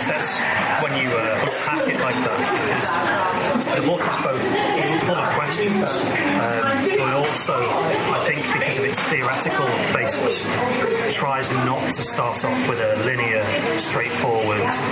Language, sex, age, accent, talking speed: English, male, 30-49, British, 140 wpm